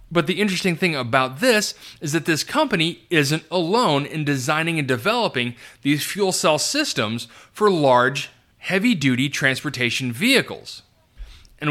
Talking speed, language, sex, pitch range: 135 wpm, English, male, 130-180 Hz